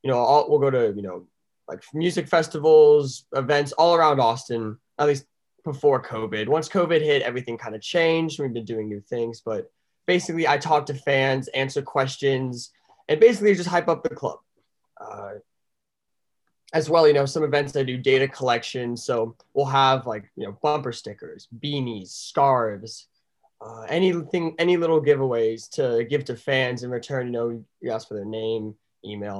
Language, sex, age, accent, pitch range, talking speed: English, male, 20-39, American, 115-150 Hz, 175 wpm